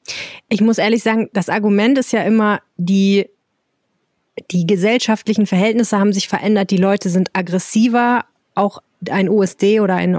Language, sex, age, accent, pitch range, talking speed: German, female, 20-39, German, 175-210 Hz, 145 wpm